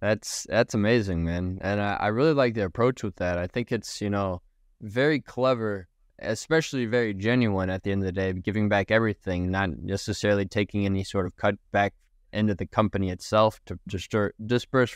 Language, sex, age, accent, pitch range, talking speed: English, male, 20-39, American, 95-115 Hz, 190 wpm